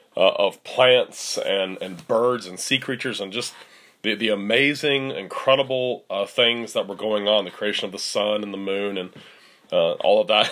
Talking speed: 190 wpm